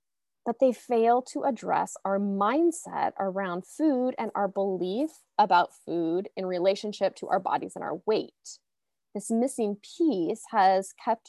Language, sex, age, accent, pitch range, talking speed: English, female, 20-39, American, 185-255 Hz, 145 wpm